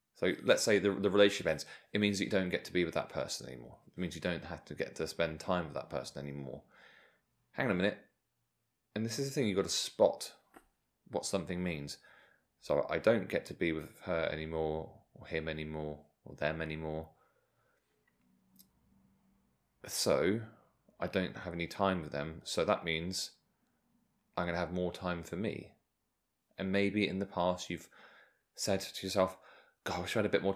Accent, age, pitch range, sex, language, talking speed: British, 30-49, 85-100 Hz, male, English, 190 wpm